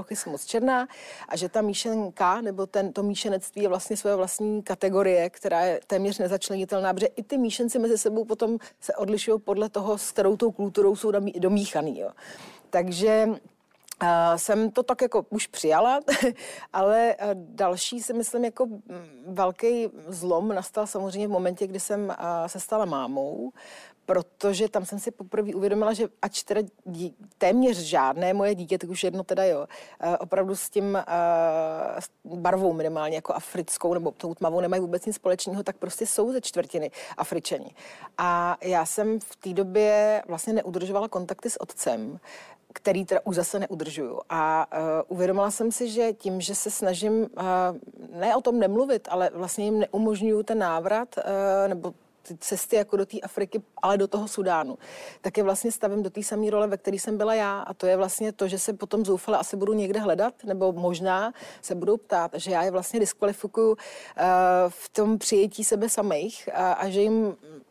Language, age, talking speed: Czech, 40-59, 165 wpm